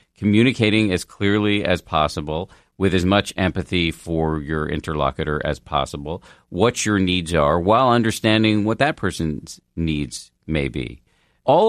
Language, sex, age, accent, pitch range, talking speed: English, male, 40-59, American, 75-95 Hz, 140 wpm